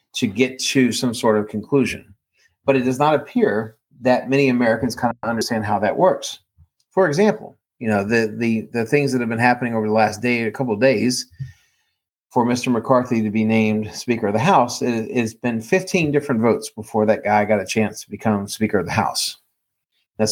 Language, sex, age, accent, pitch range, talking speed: English, male, 40-59, American, 110-135 Hz, 205 wpm